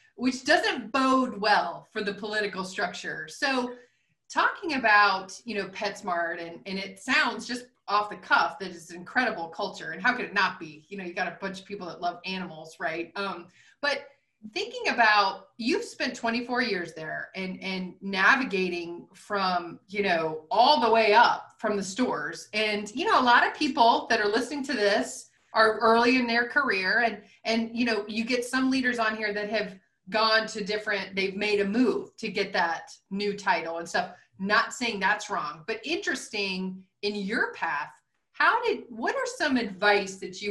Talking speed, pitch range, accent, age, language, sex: 190 wpm, 190-235 Hz, American, 30-49, English, female